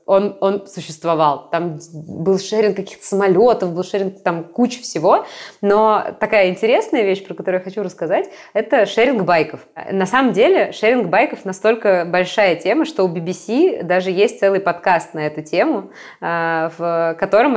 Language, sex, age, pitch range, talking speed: Russian, female, 20-39, 175-215 Hz, 155 wpm